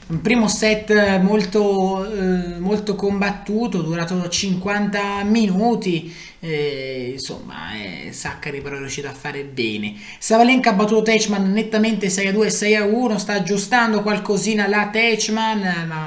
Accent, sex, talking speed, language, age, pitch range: native, male, 140 wpm, Italian, 20-39, 175-215 Hz